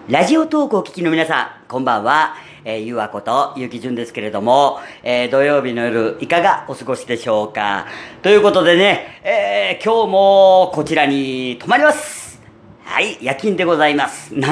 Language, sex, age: Japanese, female, 40-59